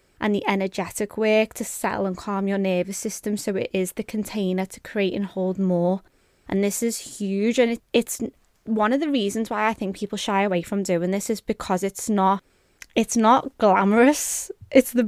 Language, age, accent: English, 20-39, British